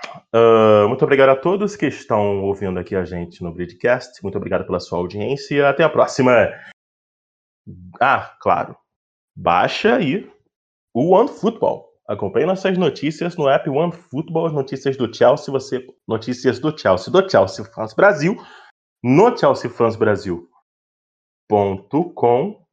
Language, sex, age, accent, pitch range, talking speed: Portuguese, male, 20-39, Brazilian, 105-165 Hz, 125 wpm